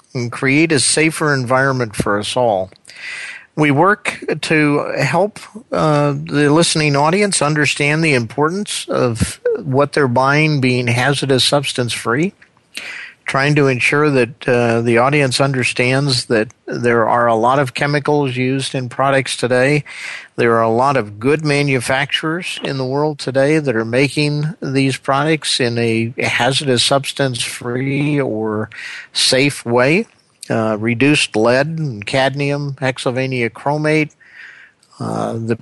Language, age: English, 50-69